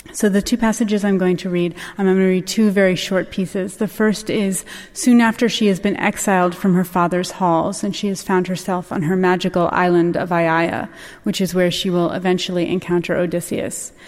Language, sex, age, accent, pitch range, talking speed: English, female, 30-49, American, 180-200 Hz, 205 wpm